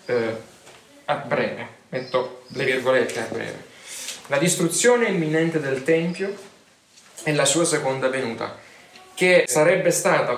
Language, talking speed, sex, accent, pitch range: Italian, 115 wpm, male, native, 130-170 Hz